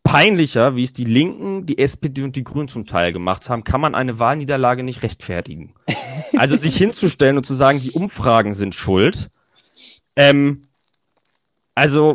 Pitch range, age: 120-155 Hz, 30-49